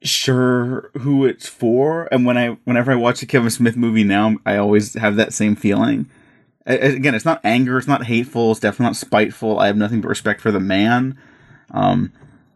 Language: English